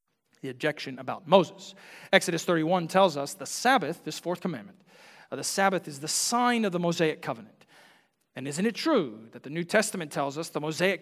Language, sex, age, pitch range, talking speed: English, male, 40-59, 145-185 Hz, 185 wpm